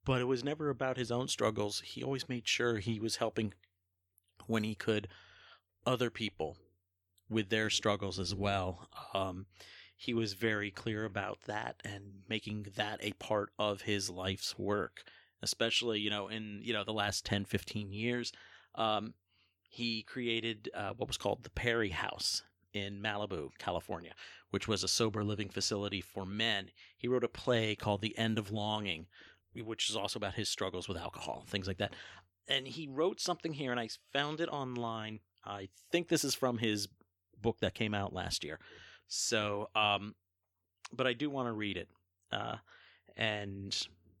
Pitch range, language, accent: 95-115 Hz, English, American